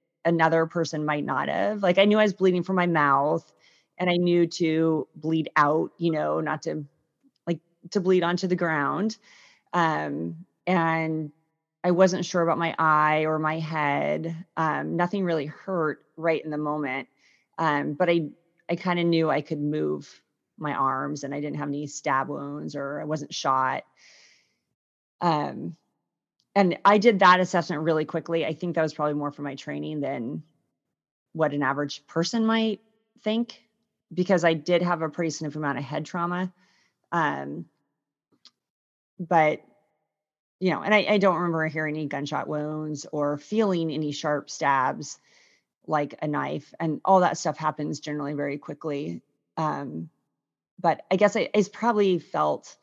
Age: 30-49